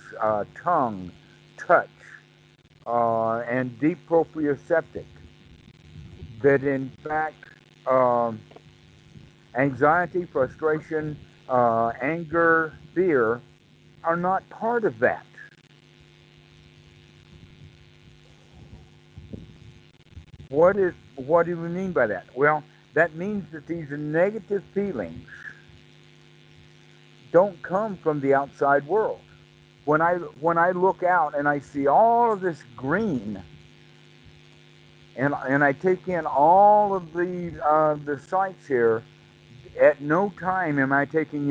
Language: English